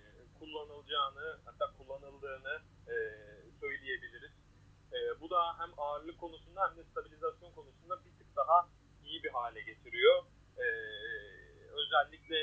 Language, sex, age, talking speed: Turkish, male, 30-49, 115 wpm